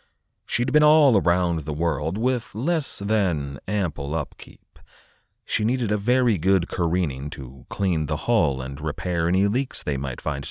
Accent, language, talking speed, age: American, English, 160 wpm, 40-59